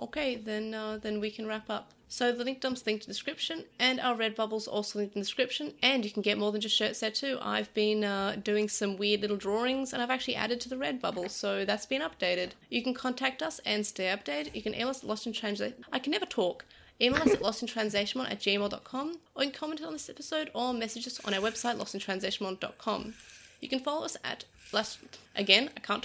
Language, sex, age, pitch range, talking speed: English, female, 30-49, 210-275 Hz, 220 wpm